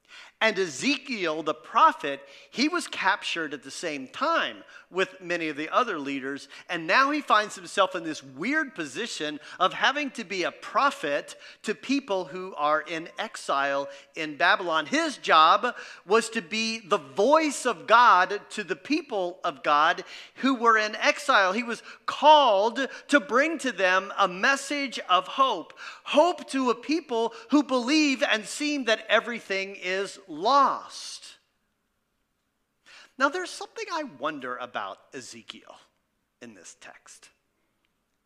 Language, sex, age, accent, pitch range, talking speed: English, male, 40-59, American, 185-285 Hz, 145 wpm